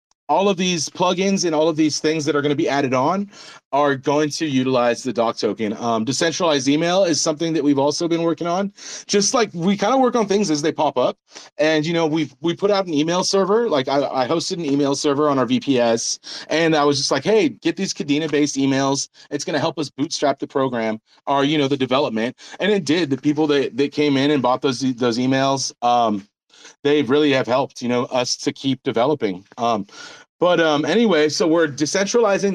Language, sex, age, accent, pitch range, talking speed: English, male, 30-49, American, 130-165 Hz, 225 wpm